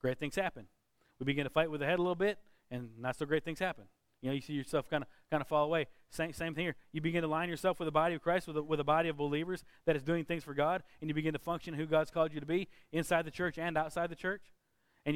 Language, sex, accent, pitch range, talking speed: English, male, American, 140-175 Hz, 295 wpm